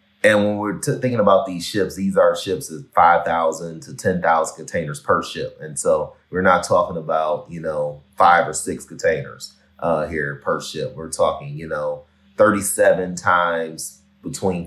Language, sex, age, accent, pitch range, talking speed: English, male, 30-49, American, 85-100 Hz, 165 wpm